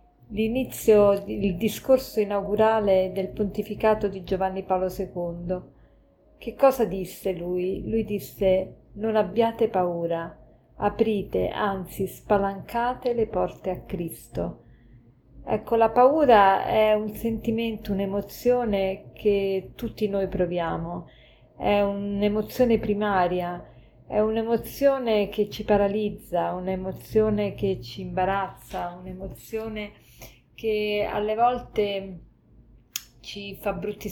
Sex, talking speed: female, 100 wpm